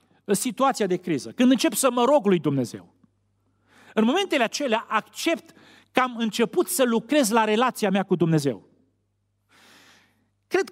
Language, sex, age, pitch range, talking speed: Romanian, male, 40-59, 150-245 Hz, 145 wpm